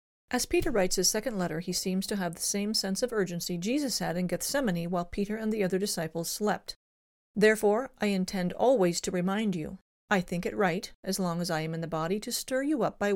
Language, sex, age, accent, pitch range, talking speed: English, female, 40-59, American, 175-215 Hz, 230 wpm